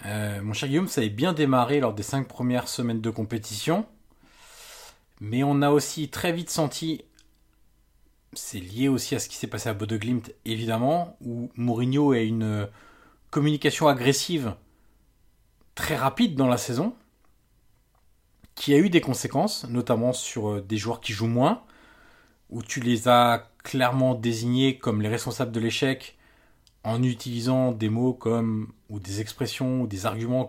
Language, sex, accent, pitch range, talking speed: French, male, French, 110-135 Hz, 155 wpm